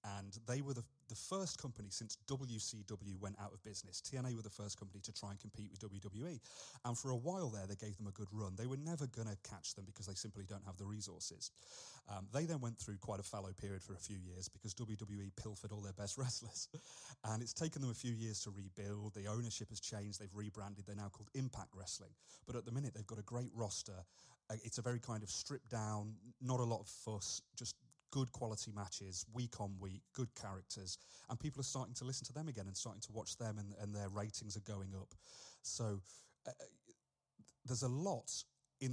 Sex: male